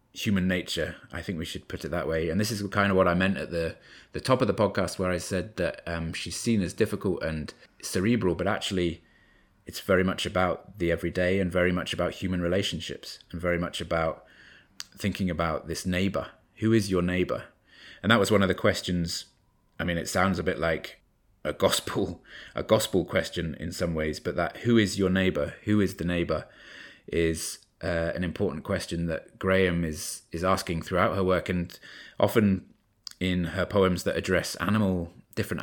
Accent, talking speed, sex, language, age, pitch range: British, 195 wpm, male, English, 20-39, 85-100 Hz